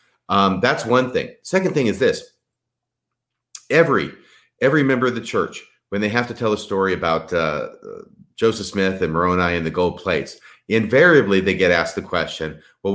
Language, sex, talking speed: English, male, 175 wpm